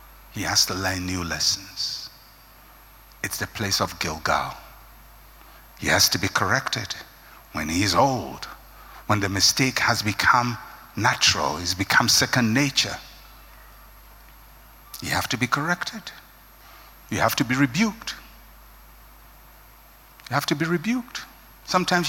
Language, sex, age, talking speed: English, male, 60-79, 130 wpm